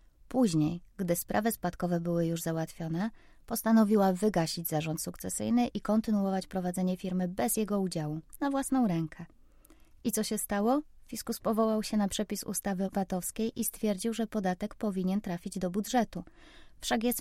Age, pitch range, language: 20-39, 180-215 Hz, Polish